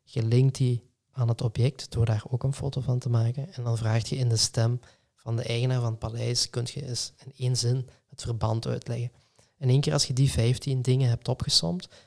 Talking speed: 230 wpm